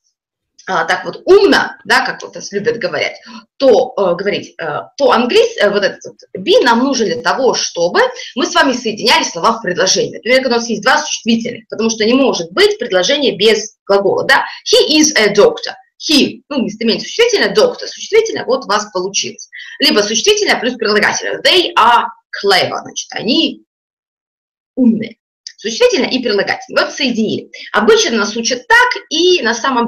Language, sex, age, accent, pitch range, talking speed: Russian, female, 20-39, native, 225-325 Hz, 170 wpm